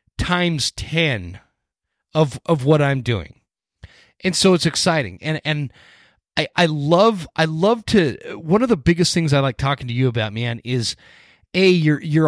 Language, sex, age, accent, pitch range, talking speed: English, male, 30-49, American, 135-170 Hz, 170 wpm